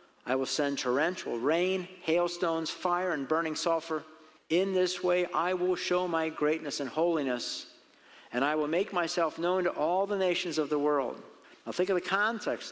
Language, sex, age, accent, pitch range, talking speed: English, male, 50-69, American, 150-195 Hz, 180 wpm